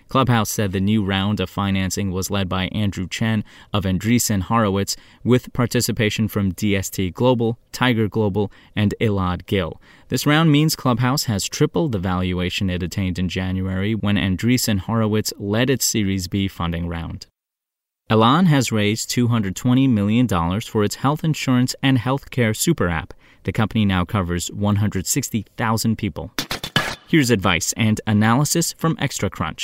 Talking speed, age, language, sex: 145 wpm, 20-39, English, male